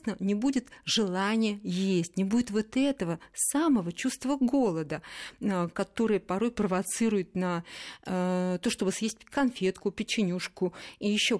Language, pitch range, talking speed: Russian, 175-220 Hz, 125 wpm